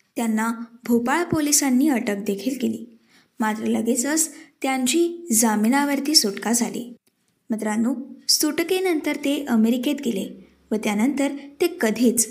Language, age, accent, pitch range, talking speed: Marathi, 20-39, native, 225-295 Hz, 100 wpm